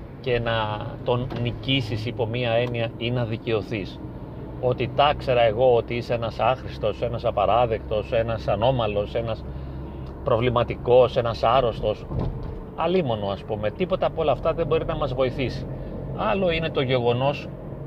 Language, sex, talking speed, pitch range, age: Greek, male, 140 wpm, 115-140 Hz, 30-49